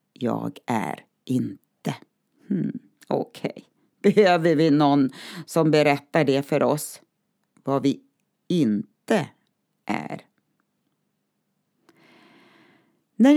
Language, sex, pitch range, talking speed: Swedish, female, 130-205 Hz, 75 wpm